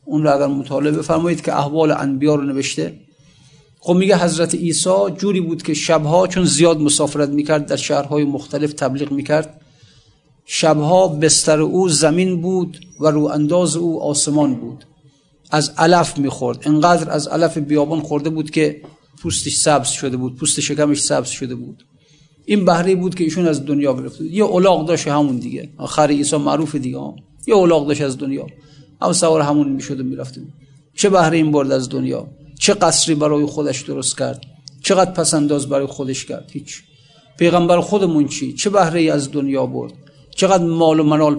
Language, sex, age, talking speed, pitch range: Persian, male, 50-69, 160 wpm, 145-165 Hz